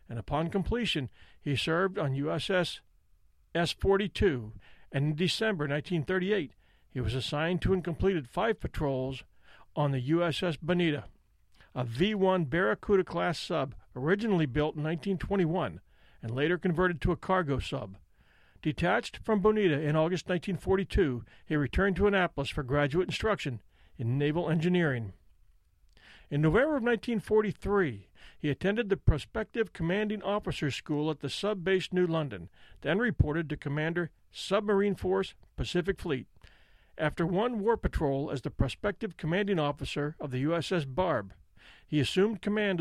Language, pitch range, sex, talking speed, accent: English, 140-190 Hz, male, 135 wpm, American